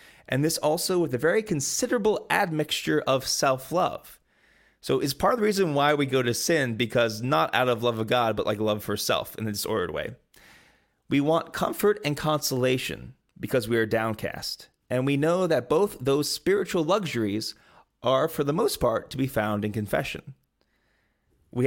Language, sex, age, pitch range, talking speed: English, male, 30-49, 120-165 Hz, 180 wpm